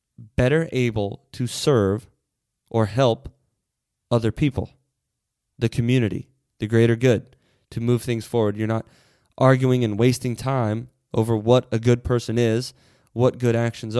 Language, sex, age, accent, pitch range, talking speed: English, male, 20-39, American, 110-130 Hz, 135 wpm